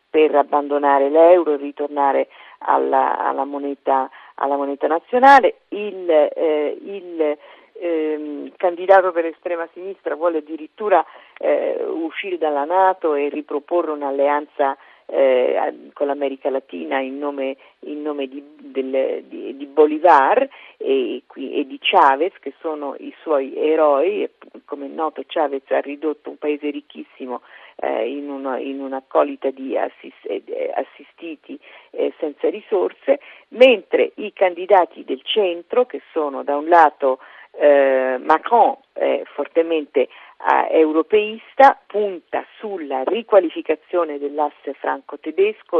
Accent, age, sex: native, 50-69, female